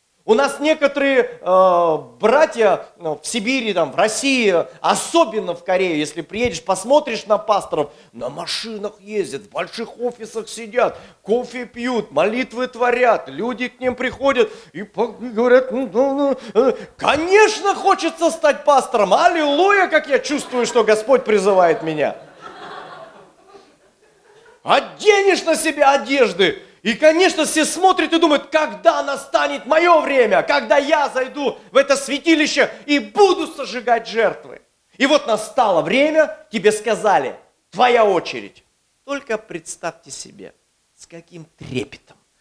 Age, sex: 40-59, male